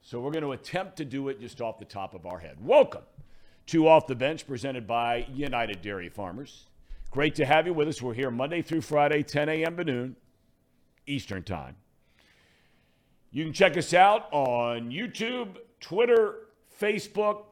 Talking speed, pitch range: 170 wpm, 120-160 Hz